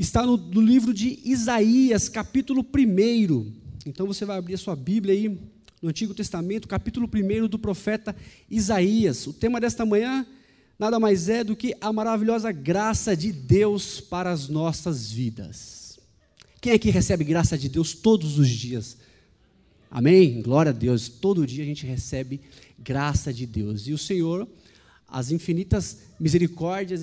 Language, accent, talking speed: Portuguese, Brazilian, 155 wpm